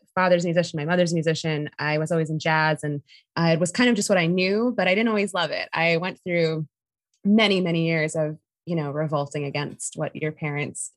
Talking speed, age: 220 wpm, 20-39